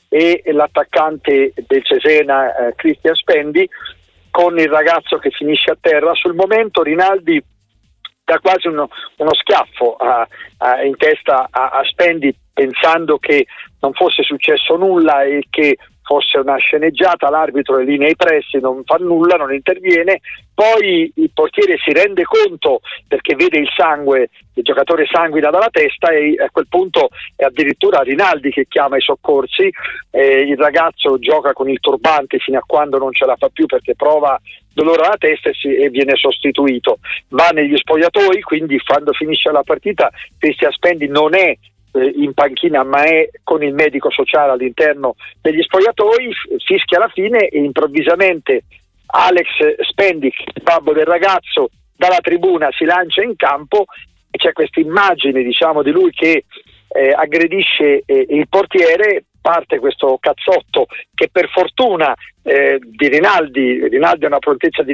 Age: 50-69